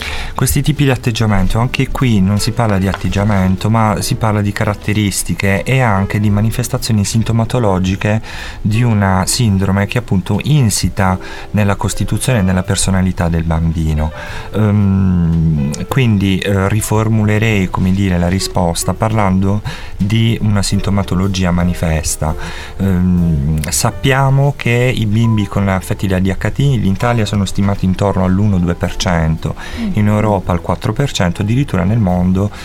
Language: Italian